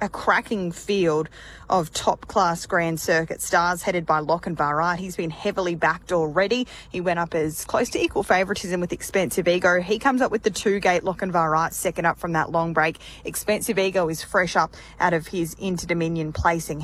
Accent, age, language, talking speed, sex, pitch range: Australian, 20-39, English, 195 wpm, female, 165-185 Hz